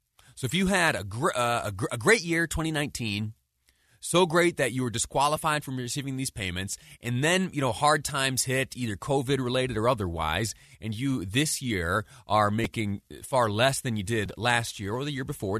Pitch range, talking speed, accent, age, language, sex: 100-140 Hz, 185 wpm, American, 30-49, English, male